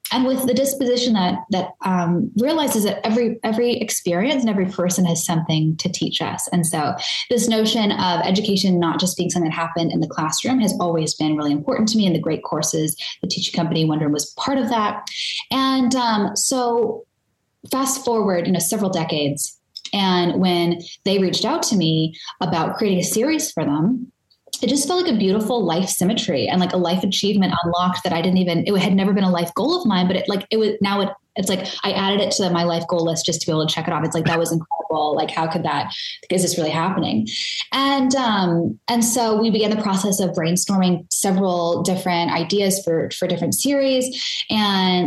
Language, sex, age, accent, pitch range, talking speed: English, female, 10-29, American, 165-220 Hz, 210 wpm